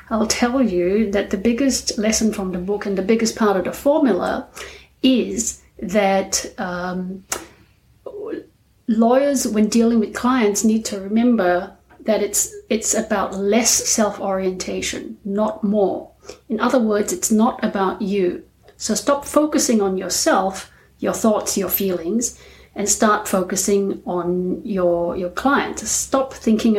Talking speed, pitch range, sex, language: 135 wpm, 185-230 Hz, female, English